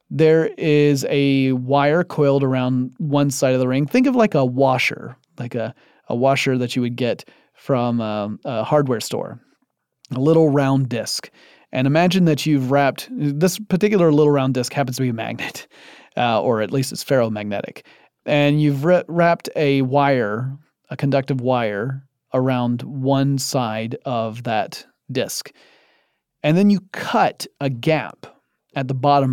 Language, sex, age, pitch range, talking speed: English, male, 30-49, 125-150 Hz, 160 wpm